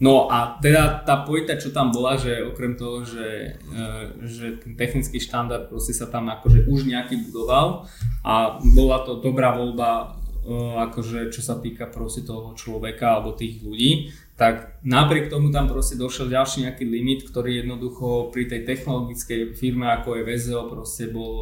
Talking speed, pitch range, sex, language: 155 wpm, 120-135 Hz, male, Slovak